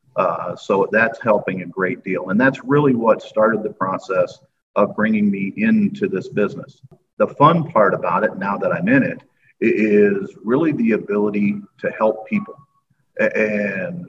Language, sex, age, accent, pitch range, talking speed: English, male, 50-69, American, 105-135 Hz, 160 wpm